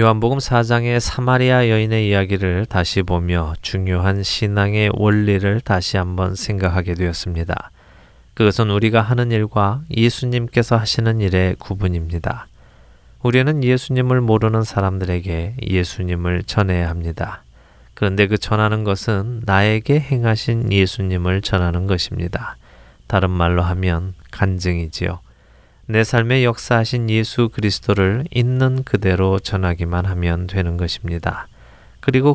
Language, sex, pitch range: Korean, male, 90-115 Hz